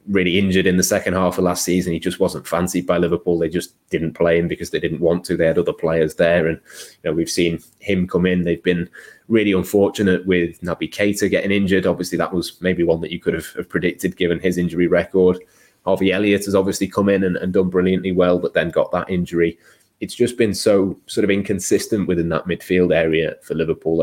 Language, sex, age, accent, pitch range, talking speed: English, male, 20-39, British, 85-95 Hz, 225 wpm